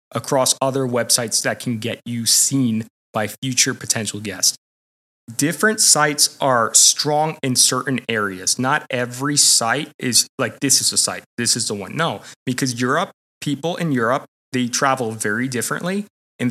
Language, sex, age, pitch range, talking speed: English, male, 20-39, 115-145 Hz, 155 wpm